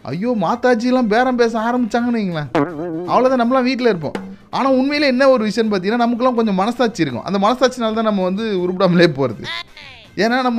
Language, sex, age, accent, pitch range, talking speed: Tamil, male, 30-49, native, 165-235 Hz, 160 wpm